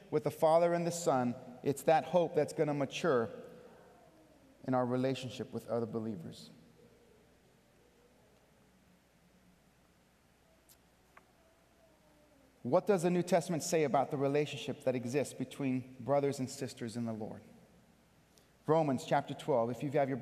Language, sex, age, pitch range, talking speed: English, male, 30-49, 125-160 Hz, 130 wpm